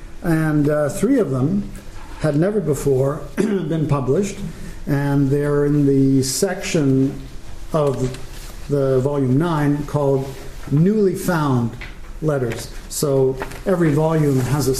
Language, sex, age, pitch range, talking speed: English, male, 50-69, 135-160 Hz, 115 wpm